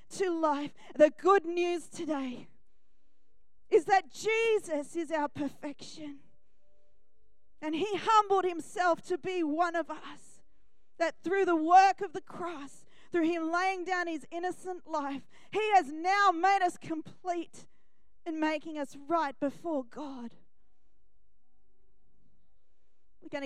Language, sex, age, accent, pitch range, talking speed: English, female, 40-59, Australian, 250-325 Hz, 125 wpm